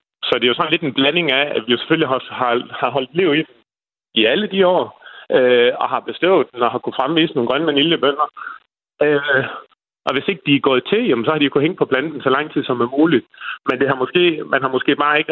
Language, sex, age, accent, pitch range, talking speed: Danish, male, 30-49, native, 115-155 Hz, 255 wpm